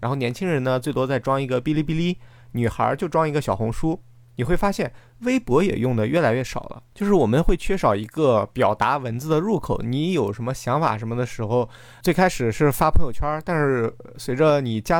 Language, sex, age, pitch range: Chinese, male, 20-39, 120-165 Hz